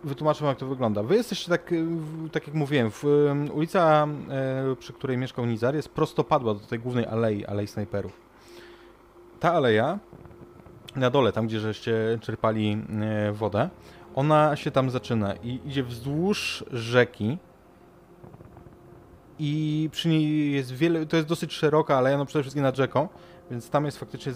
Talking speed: 160 wpm